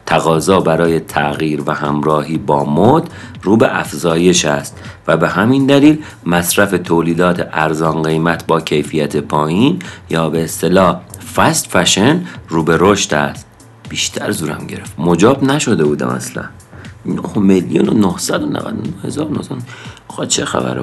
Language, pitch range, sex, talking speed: Persian, 85-115 Hz, male, 125 wpm